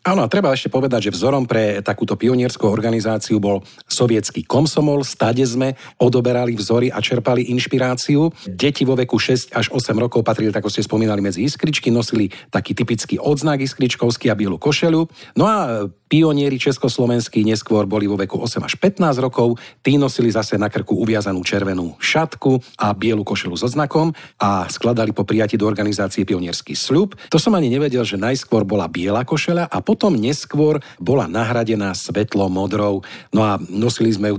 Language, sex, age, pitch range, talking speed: Slovak, male, 40-59, 105-130 Hz, 165 wpm